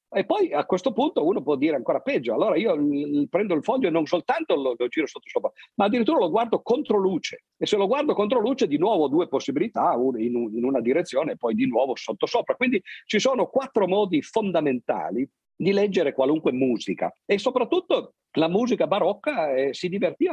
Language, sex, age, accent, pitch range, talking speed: Italian, male, 50-69, native, 120-185 Hz, 195 wpm